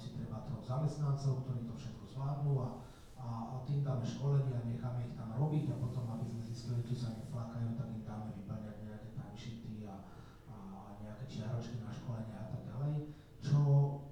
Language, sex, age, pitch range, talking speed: Slovak, male, 30-49, 115-135 Hz, 180 wpm